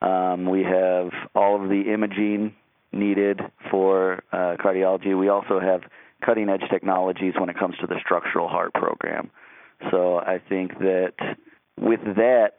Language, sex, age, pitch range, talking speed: English, male, 30-49, 90-100 Hz, 145 wpm